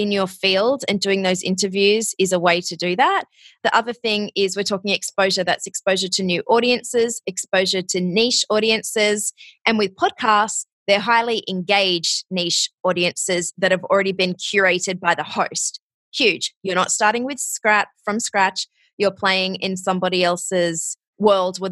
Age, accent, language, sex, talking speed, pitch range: 20-39, Australian, English, female, 165 wpm, 185-215 Hz